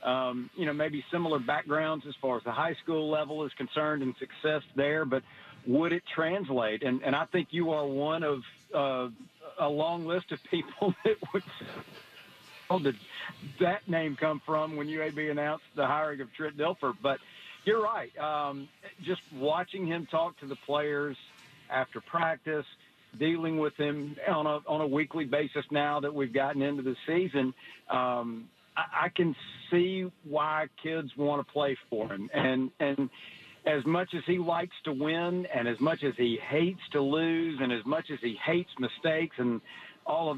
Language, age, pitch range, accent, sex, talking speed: English, 50-69, 140-165 Hz, American, male, 175 wpm